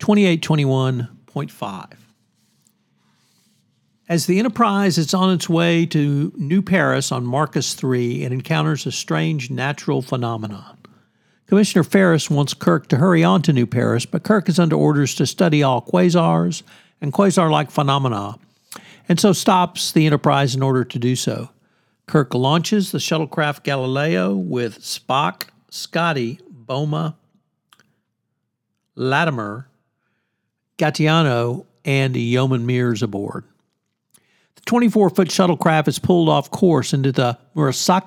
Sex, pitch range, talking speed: male, 130-180 Hz, 120 wpm